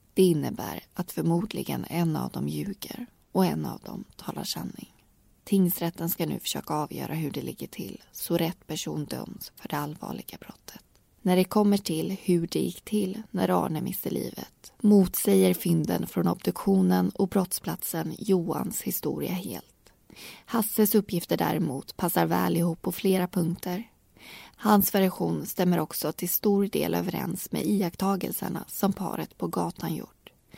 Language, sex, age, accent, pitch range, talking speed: Swedish, female, 20-39, native, 165-200 Hz, 150 wpm